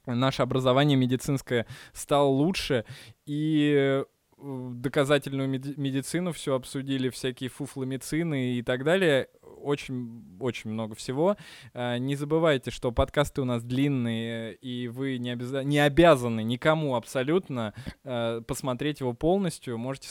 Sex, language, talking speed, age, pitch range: male, Russian, 110 wpm, 20-39, 125-145 Hz